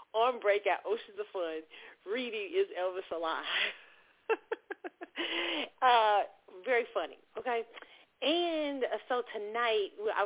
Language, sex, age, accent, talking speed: English, female, 40-59, American, 105 wpm